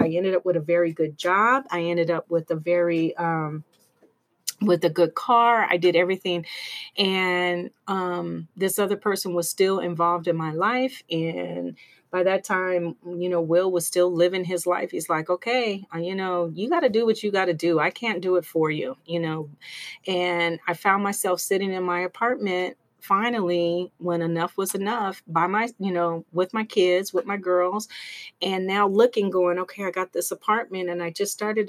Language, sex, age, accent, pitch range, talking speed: English, female, 30-49, American, 170-195 Hz, 195 wpm